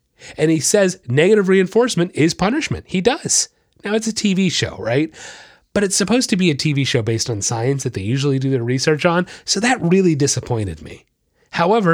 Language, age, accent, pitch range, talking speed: English, 30-49, American, 125-180 Hz, 195 wpm